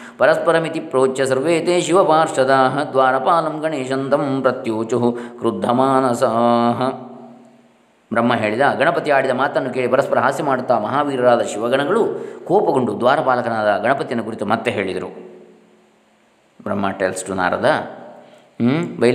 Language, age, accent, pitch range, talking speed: Kannada, 20-39, native, 115-135 Hz, 95 wpm